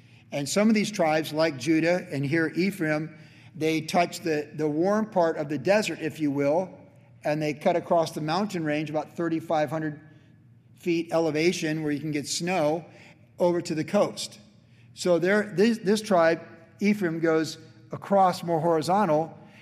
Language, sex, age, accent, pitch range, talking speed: English, male, 50-69, American, 150-185 Hz, 160 wpm